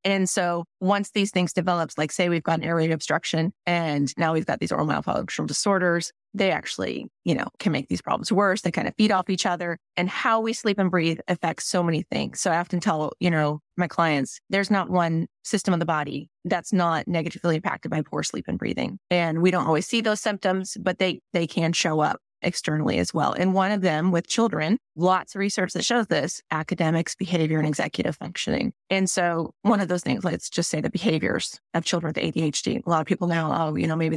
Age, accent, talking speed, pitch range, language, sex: 30-49, American, 225 wpm, 165-190 Hz, English, female